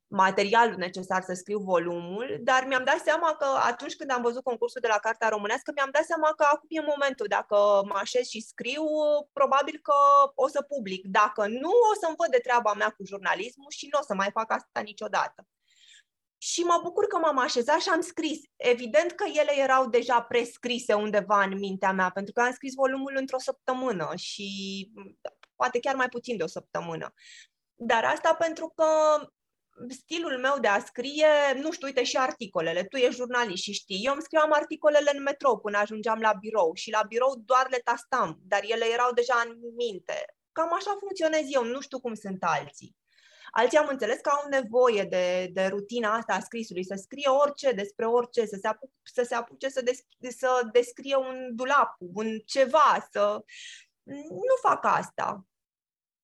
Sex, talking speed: female, 185 wpm